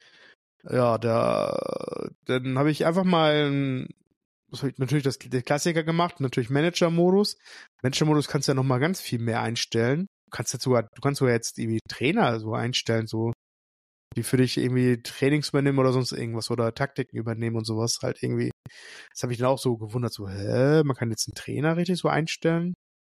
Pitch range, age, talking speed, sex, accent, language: 120-155 Hz, 20-39, 180 wpm, male, German, German